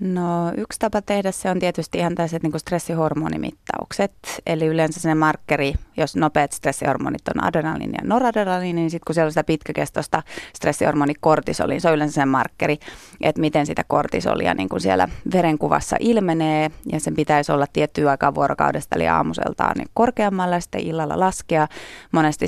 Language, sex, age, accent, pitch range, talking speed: Finnish, female, 30-49, native, 150-170 Hz, 155 wpm